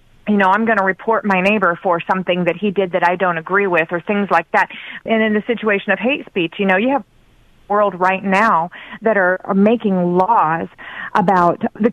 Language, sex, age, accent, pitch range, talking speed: English, female, 30-49, American, 185-220 Hz, 215 wpm